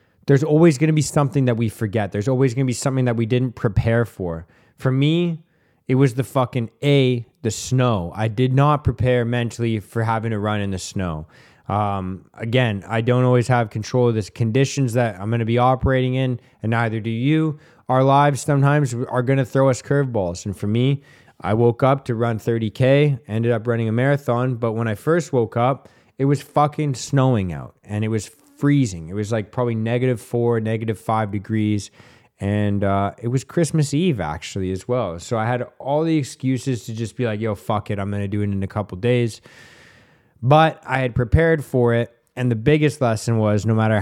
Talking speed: 205 wpm